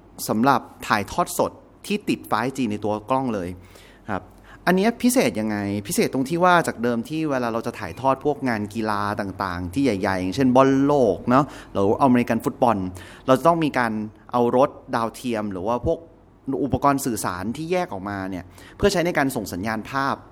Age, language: 30-49, Thai